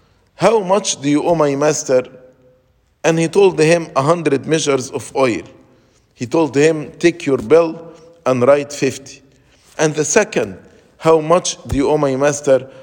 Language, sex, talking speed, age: English, male, 165 wpm, 50-69